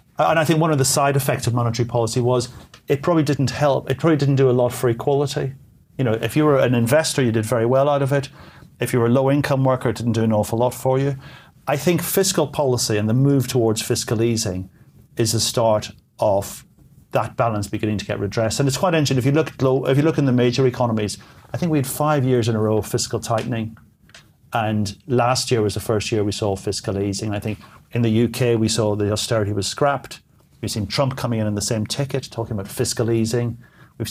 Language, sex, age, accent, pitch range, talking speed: English, male, 40-59, British, 110-140 Hz, 245 wpm